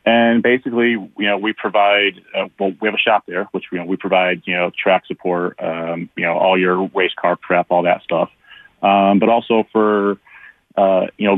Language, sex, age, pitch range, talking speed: English, male, 30-49, 90-105 Hz, 210 wpm